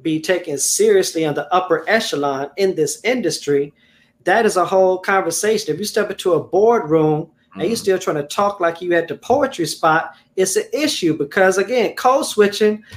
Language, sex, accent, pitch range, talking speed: English, male, American, 160-220 Hz, 185 wpm